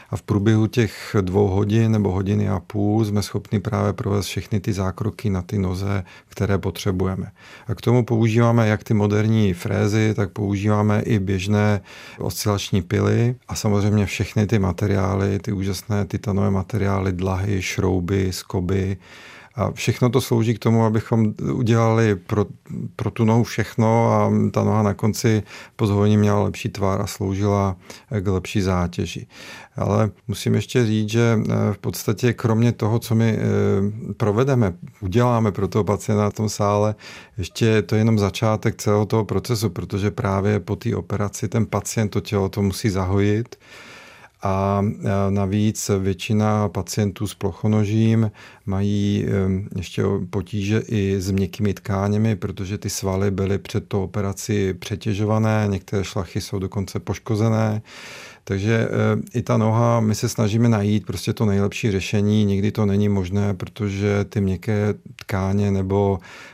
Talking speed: 145 wpm